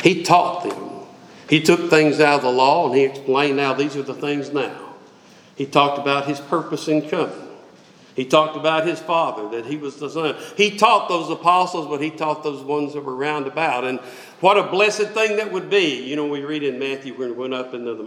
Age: 50-69